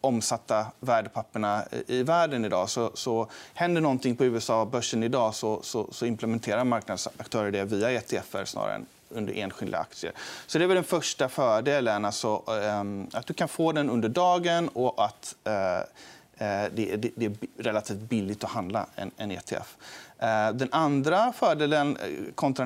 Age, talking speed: 30-49, 155 wpm